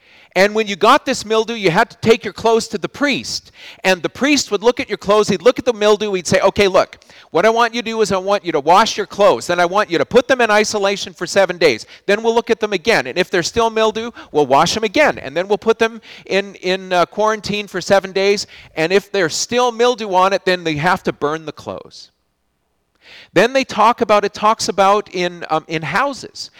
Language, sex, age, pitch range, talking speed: English, male, 40-59, 165-225 Hz, 250 wpm